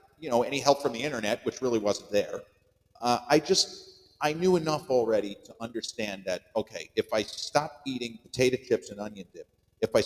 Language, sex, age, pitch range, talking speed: English, male, 50-69, 115-150 Hz, 195 wpm